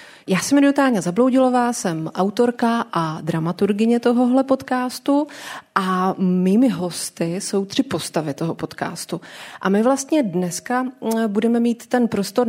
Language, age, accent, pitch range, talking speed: Czech, 30-49, native, 180-220 Hz, 125 wpm